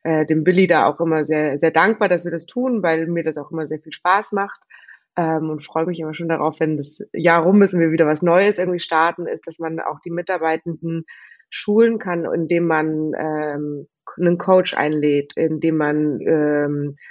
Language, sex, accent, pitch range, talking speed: German, female, German, 160-185 Hz, 205 wpm